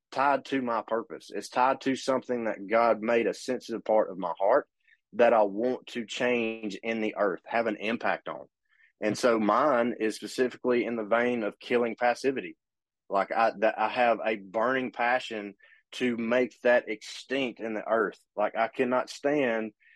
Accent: American